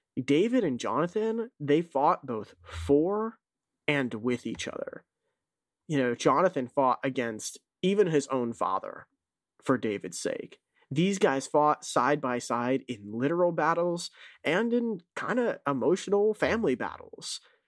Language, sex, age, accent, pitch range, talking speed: English, male, 30-49, American, 125-170 Hz, 130 wpm